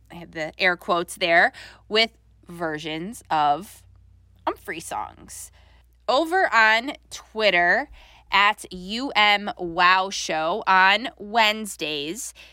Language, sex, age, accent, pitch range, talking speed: English, female, 20-39, American, 170-225 Hz, 85 wpm